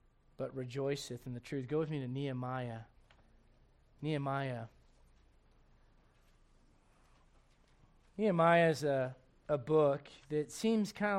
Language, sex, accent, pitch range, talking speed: English, male, American, 135-180 Hz, 100 wpm